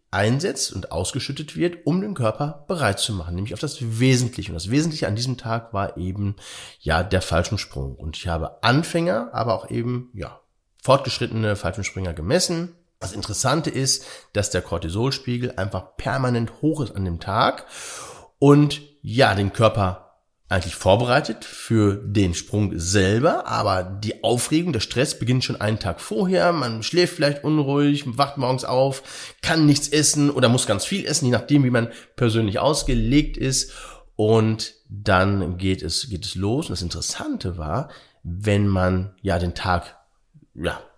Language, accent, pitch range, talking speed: German, German, 95-140 Hz, 160 wpm